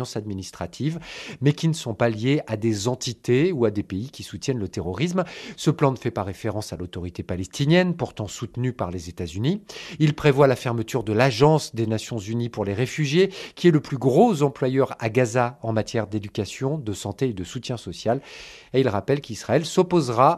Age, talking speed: 40-59, 195 wpm